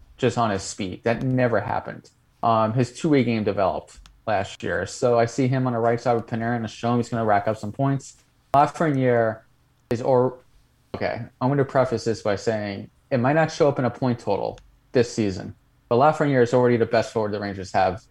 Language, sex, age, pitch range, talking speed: English, male, 20-39, 110-130 Hz, 220 wpm